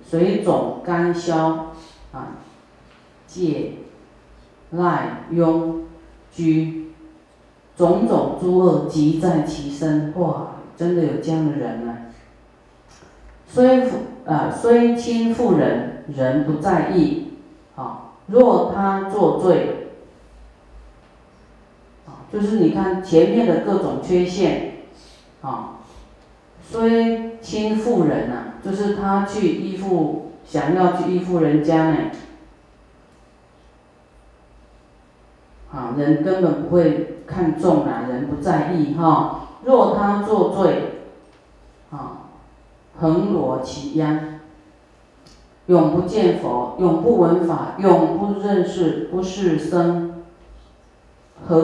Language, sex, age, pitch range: Chinese, female, 40-59, 150-180 Hz